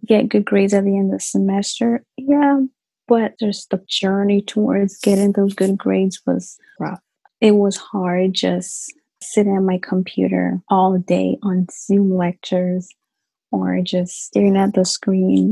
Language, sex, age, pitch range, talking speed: English, female, 20-39, 185-225 Hz, 155 wpm